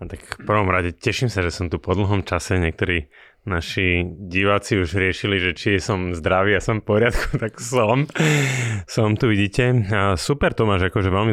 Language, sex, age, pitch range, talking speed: Slovak, male, 30-49, 85-100 Hz, 180 wpm